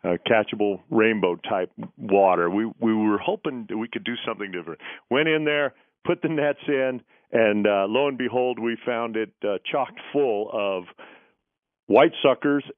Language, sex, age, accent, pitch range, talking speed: English, male, 50-69, American, 100-130 Hz, 165 wpm